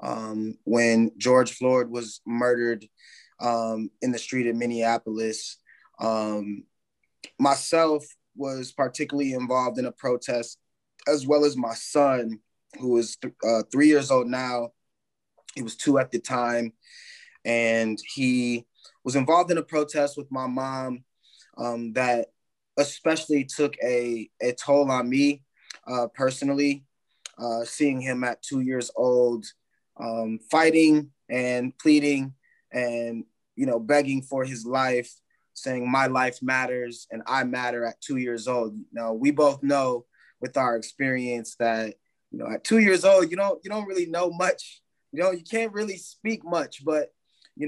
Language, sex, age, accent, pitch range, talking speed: English, male, 20-39, American, 120-145 Hz, 150 wpm